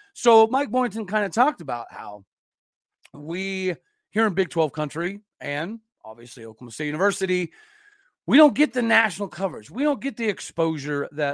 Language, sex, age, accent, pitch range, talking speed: English, male, 40-59, American, 155-225 Hz, 165 wpm